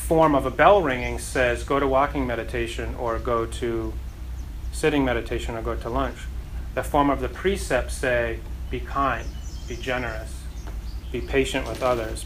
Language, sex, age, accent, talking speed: English, male, 30-49, American, 160 wpm